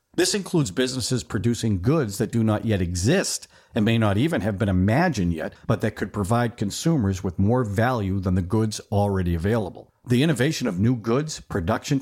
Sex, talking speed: male, 185 wpm